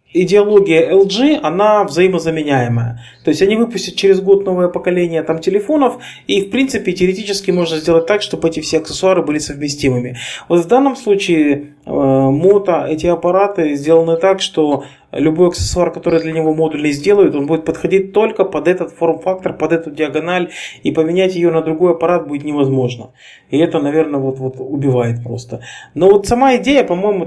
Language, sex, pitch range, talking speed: Russian, male, 140-185 Hz, 160 wpm